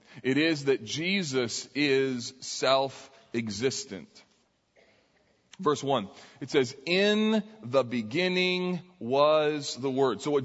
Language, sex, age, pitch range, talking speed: English, male, 40-59, 135-180 Hz, 105 wpm